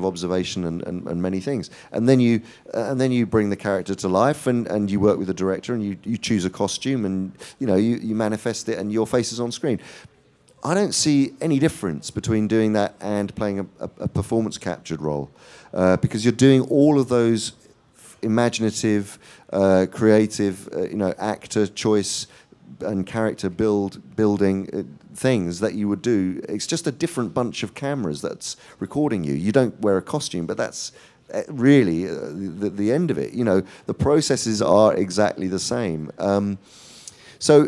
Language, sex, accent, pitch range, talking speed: English, male, British, 95-125 Hz, 190 wpm